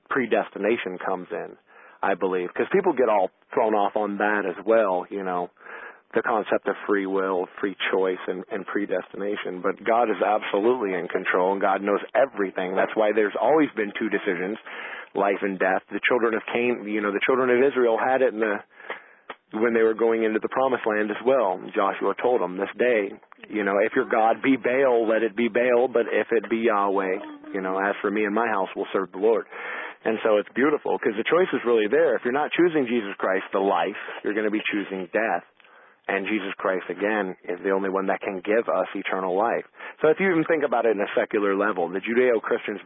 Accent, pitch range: American, 100-125 Hz